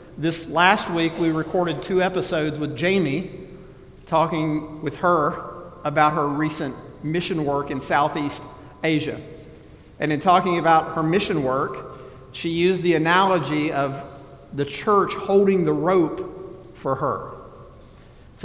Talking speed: 130 wpm